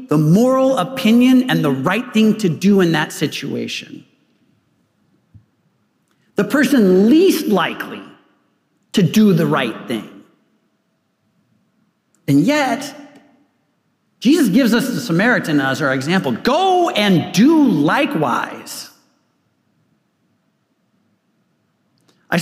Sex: male